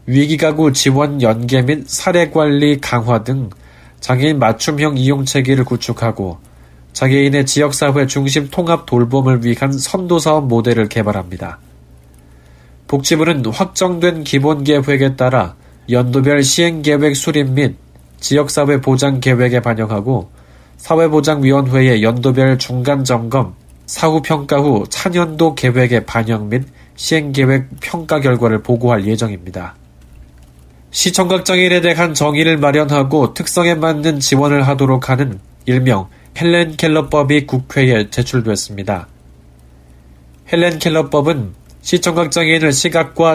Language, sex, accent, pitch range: Korean, male, native, 115-155 Hz